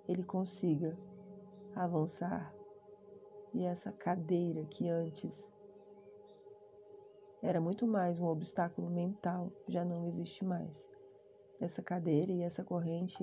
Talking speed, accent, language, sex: 105 wpm, Brazilian, Portuguese, female